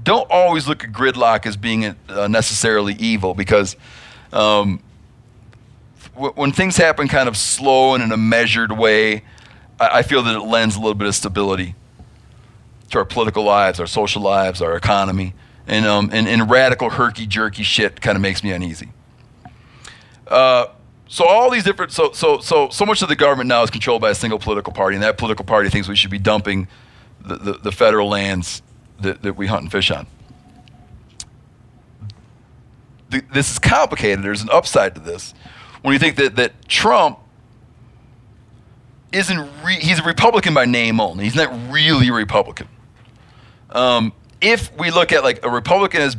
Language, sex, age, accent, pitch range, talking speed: English, male, 40-59, American, 105-130 Hz, 170 wpm